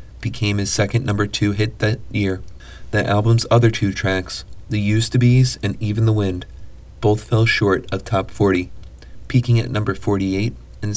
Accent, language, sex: American, English, male